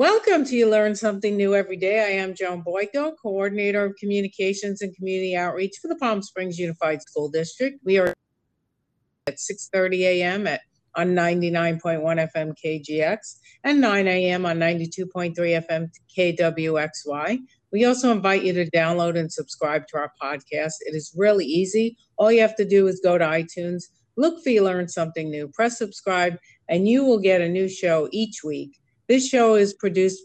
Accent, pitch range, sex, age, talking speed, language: American, 170-210 Hz, female, 50-69, 170 wpm, English